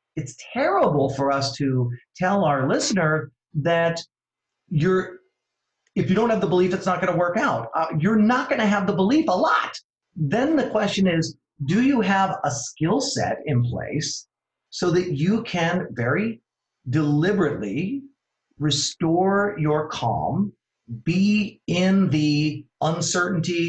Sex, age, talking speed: male, 40-59, 145 wpm